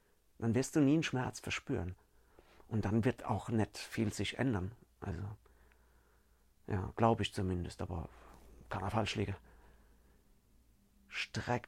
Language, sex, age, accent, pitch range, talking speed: German, male, 40-59, German, 95-125 Hz, 130 wpm